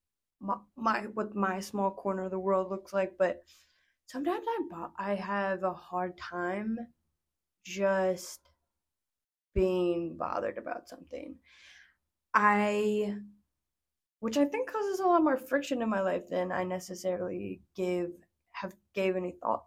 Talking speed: 135 wpm